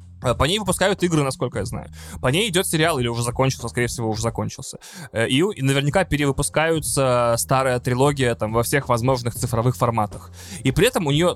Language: Russian